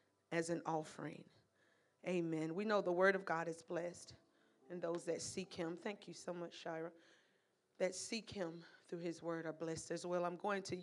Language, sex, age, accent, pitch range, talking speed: English, female, 30-49, American, 170-205 Hz, 195 wpm